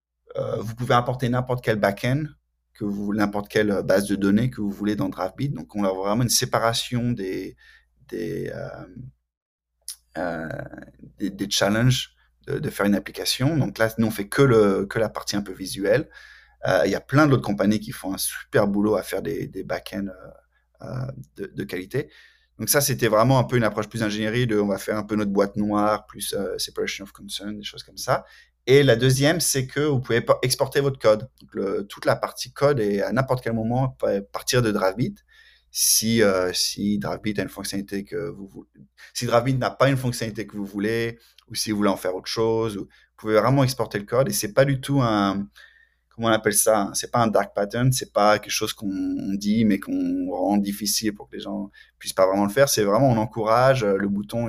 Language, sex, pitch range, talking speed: French, male, 100-130 Hz, 215 wpm